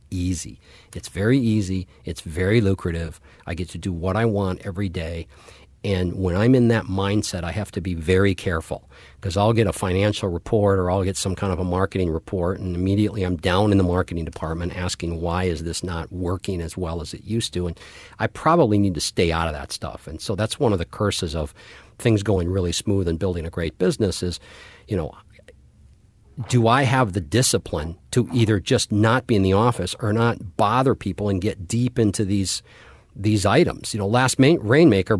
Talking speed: 205 wpm